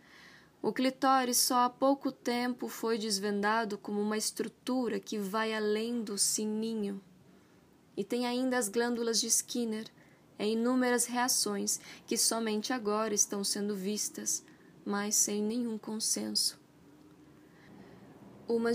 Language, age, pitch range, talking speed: Portuguese, 10-29, 205-230 Hz, 120 wpm